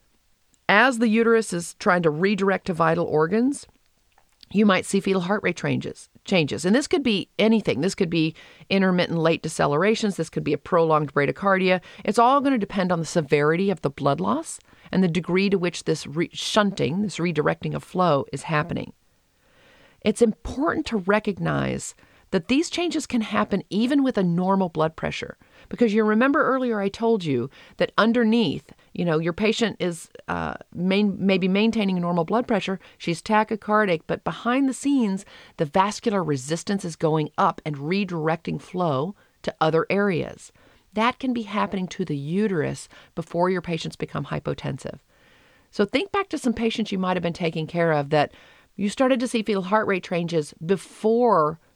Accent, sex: American, female